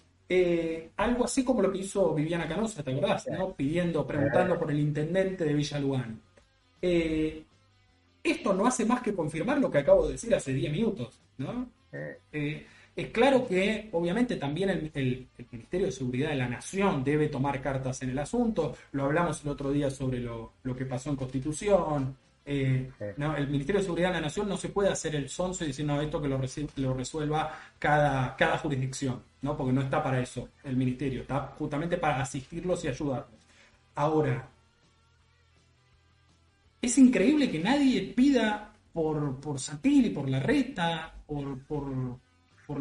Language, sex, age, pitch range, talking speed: Spanish, male, 20-39, 130-185 Hz, 170 wpm